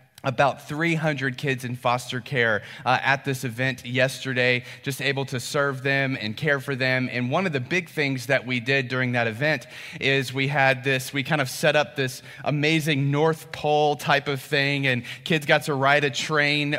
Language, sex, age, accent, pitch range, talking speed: English, male, 30-49, American, 125-150 Hz, 195 wpm